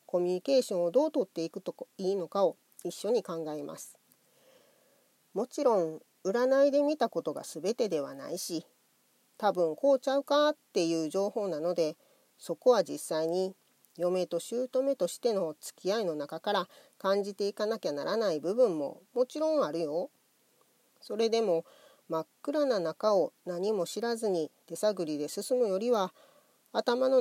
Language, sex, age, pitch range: Japanese, female, 40-59, 170-255 Hz